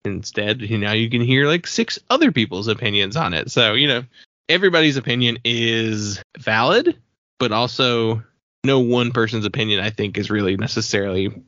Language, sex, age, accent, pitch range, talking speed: English, male, 20-39, American, 105-130 Hz, 160 wpm